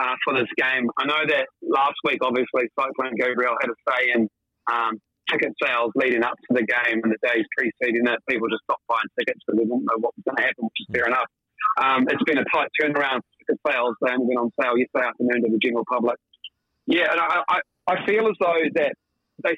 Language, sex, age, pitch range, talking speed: English, male, 30-49, 120-165 Hz, 235 wpm